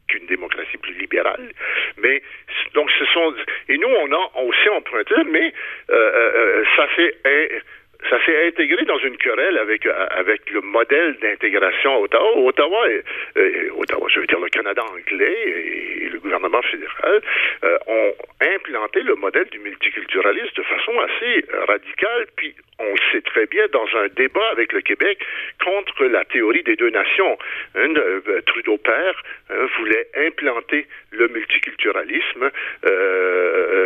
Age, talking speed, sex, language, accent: 60-79, 155 wpm, male, French, French